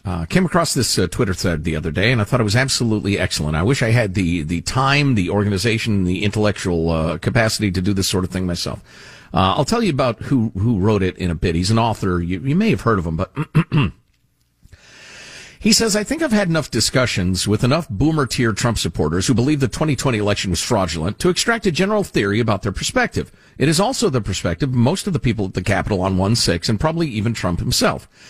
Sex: male